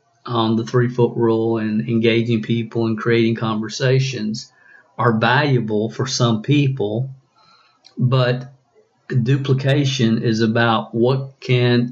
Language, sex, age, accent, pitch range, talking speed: English, male, 50-69, American, 115-130 Hz, 110 wpm